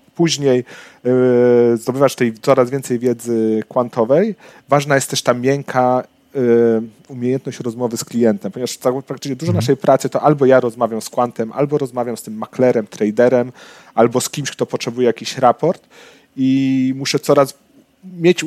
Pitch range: 120-150 Hz